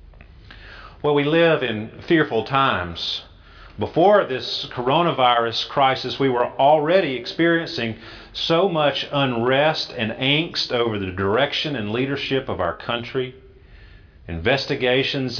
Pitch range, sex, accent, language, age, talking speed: 100-140 Hz, male, American, English, 40-59, 110 wpm